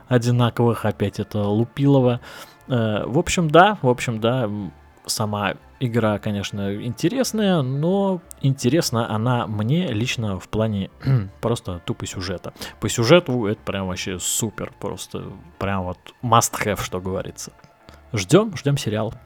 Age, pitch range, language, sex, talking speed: 20-39, 100-135 Hz, Russian, male, 130 wpm